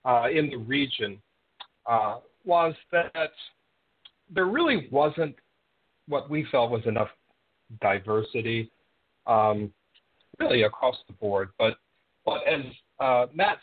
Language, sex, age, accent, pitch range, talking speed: English, male, 50-69, American, 110-170 Hz, 115 wpm